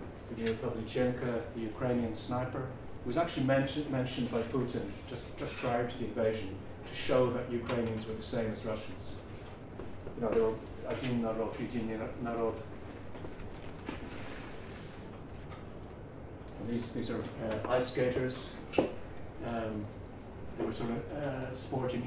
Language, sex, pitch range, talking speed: English, male, 110-130 Hz, 120 wpm